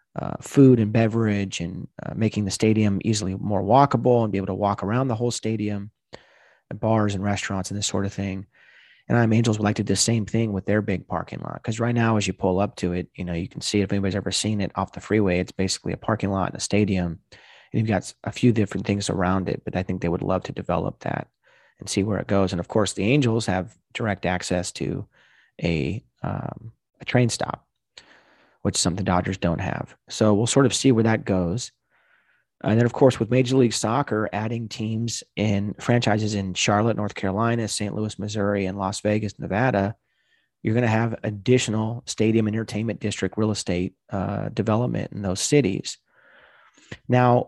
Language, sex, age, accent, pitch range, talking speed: English, male, 30-49, American, 95-115 Hz, 210 wpm